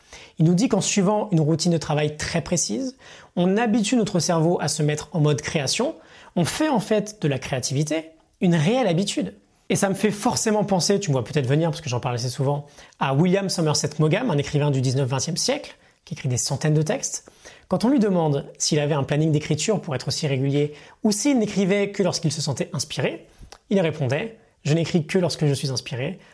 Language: French